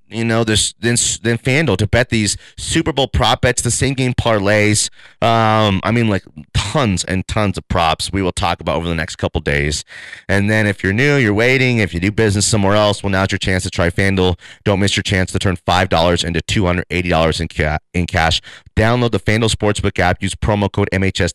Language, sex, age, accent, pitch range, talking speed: English, male, 30-49, American, 90-110 Hz, 215 wpm